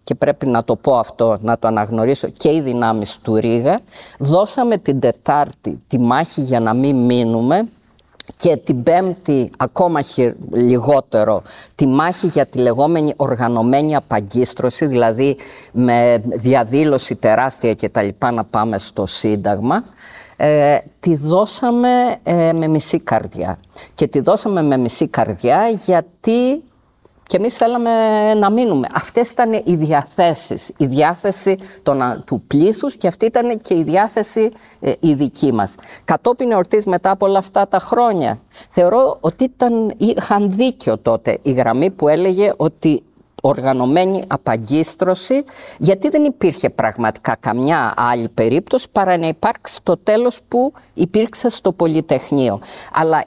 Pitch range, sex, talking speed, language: 125-205 Hz, female, 135 wpm, Greek